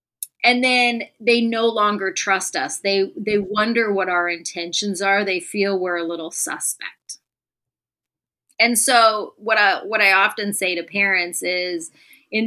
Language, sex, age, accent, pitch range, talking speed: English, female, 30-49, American, 175-215 Hz, 155 wpm